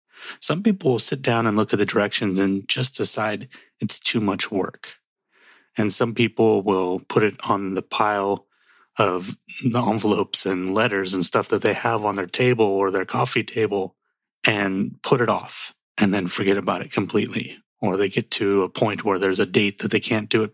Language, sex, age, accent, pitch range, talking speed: English, male, 30-49, American, 100-125 Hz, 200 wpm